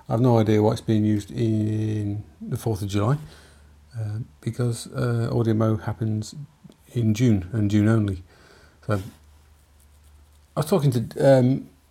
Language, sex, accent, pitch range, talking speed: English, male, British, 105-120 Hz, 140 wpm